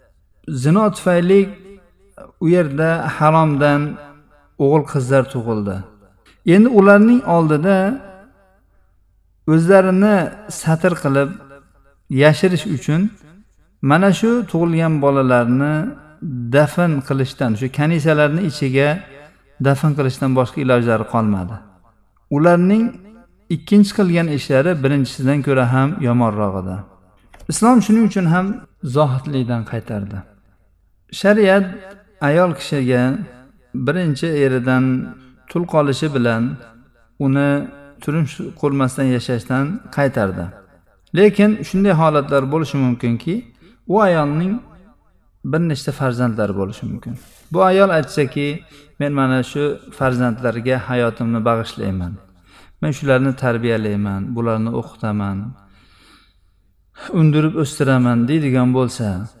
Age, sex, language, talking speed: 50-69, male, Russian, 85 wpm